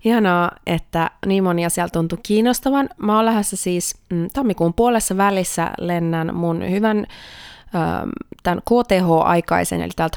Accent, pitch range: native, 165-205 Hz